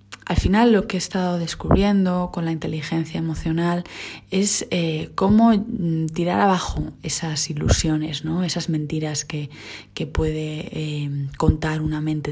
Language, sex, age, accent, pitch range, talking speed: Spanish, female, 20-39, Spanish, 155-170 Hz, 135 wpm